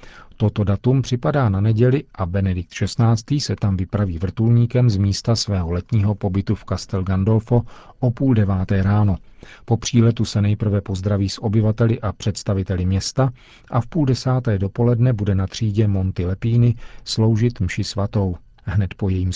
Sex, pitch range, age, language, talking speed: male, 100-115 Hz, 40-59, Czech, 155 wpm